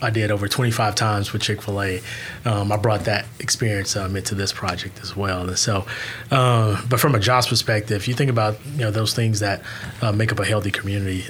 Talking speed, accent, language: 230 wpm, American, English